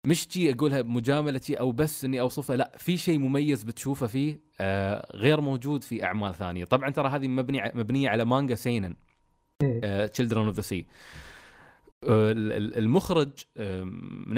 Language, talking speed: Arabic, 140 wpm